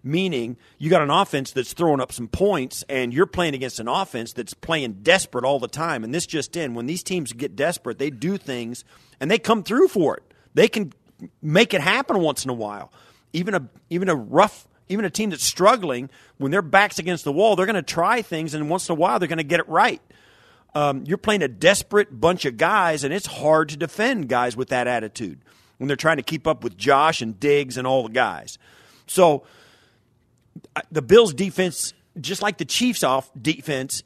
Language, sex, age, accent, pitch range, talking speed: English, male, 40-59, American, 130-195 Hz, 215 wpm